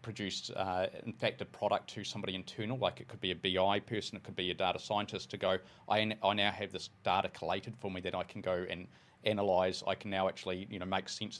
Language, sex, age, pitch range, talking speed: English, male, 30-49, 90-110 Hz, 255 wpm